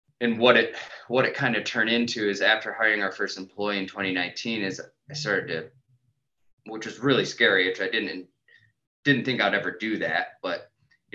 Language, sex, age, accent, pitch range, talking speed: English, male, 20-39, American, 95-120 Hz, 195 wpm